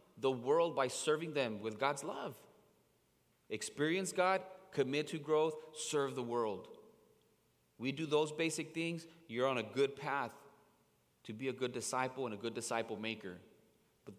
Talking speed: 155 wpm